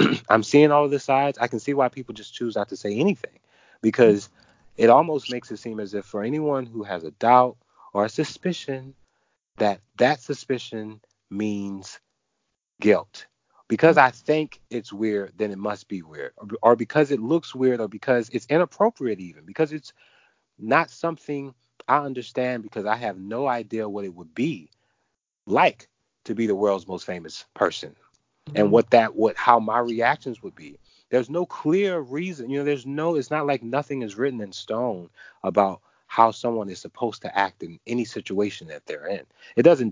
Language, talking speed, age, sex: English, 185 wpm, 30-49, male